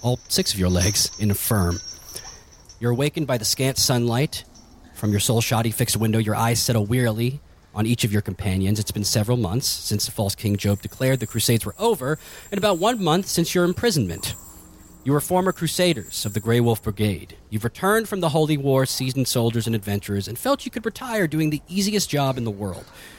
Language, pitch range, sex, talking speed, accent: English, 105-155 Hz, male, 205 wpm, American